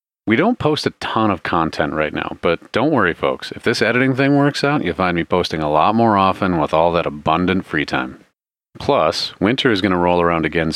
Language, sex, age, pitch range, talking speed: English, male, 40-59, 85-110 Hz, 230 wpm